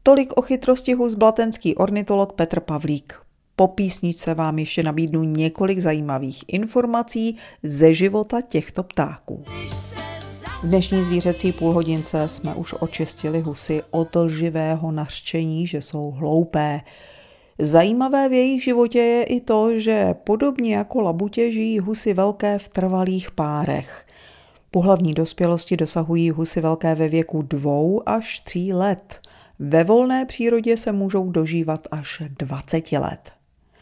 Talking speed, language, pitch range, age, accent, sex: 125 wpm, Czech, 160-215 Hz, 40-59, native, female